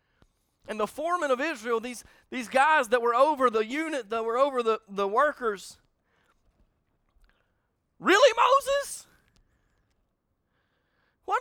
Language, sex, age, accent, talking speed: English, male, 40-59, American, 115 wpm